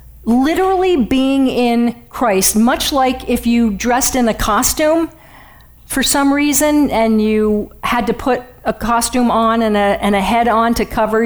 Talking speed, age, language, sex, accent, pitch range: 160 wpm, 50-69, English, female, American, 200-245 Hz